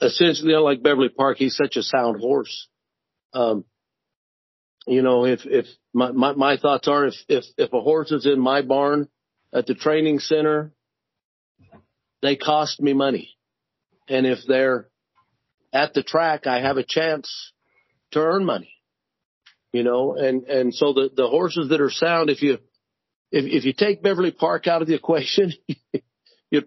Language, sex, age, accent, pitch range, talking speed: English, male, 50-69, American, 135-155 Hz, 170 wpm